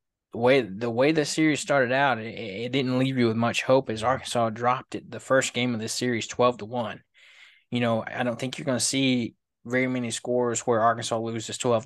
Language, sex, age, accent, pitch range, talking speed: English, male, 20-39, American, 115-125 Hz, 230 wpm